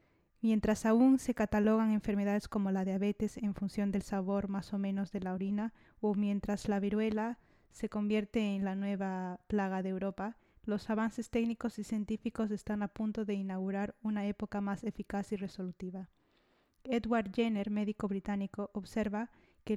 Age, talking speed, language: 20-39, 160 wpm, Spanish